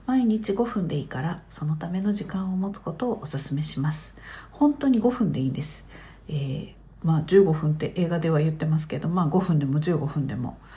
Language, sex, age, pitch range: Japanese, female, 50-69, 150-215 Hz